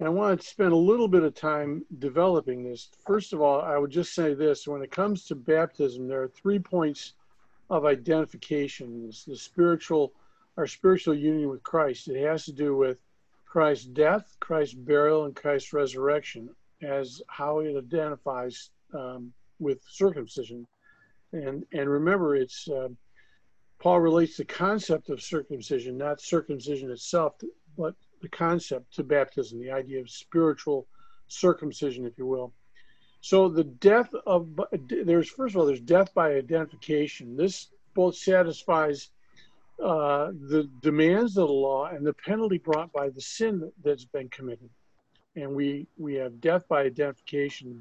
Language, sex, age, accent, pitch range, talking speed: English, male, 50-69, American, 140-180 Hz, 150 wpm